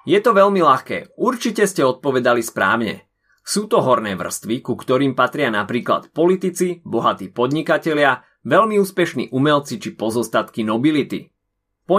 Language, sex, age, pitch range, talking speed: Slovak, male, 30-49, 115-170 Hz, 130 wpm